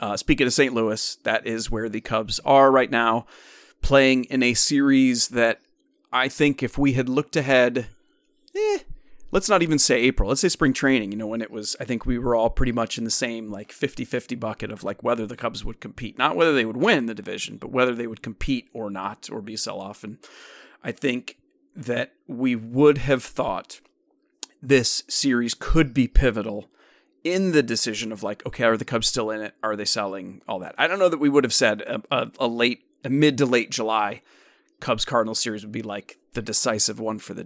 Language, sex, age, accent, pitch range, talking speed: English, male, 30-49, American, 110-140 Hz, 220 wpm